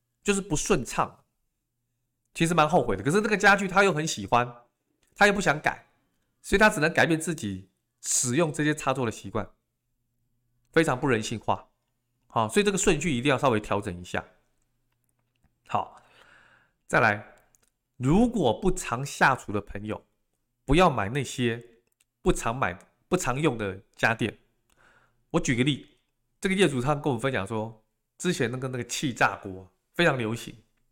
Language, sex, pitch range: Chinese, male, 120-160 Hz